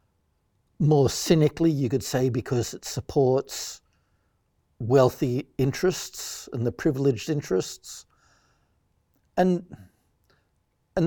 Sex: male